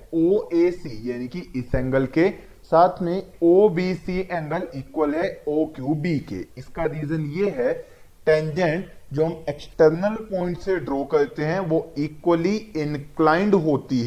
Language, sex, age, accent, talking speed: Hindi, male, 20-39, native, 130 wpm